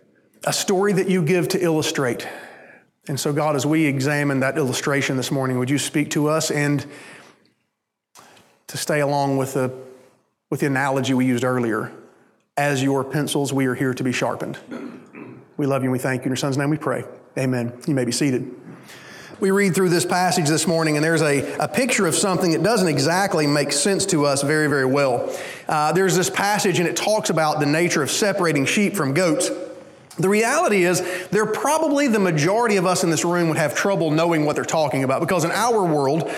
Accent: American